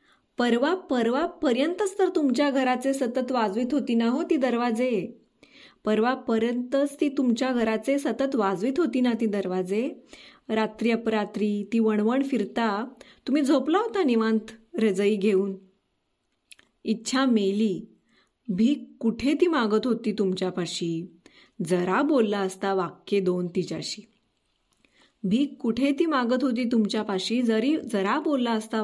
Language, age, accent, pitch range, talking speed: Marathi, 20-39, native, 205-265 Hz, 120 wpm